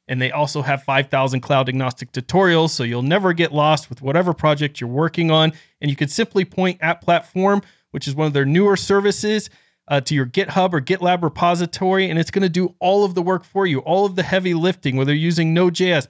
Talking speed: 225 wpm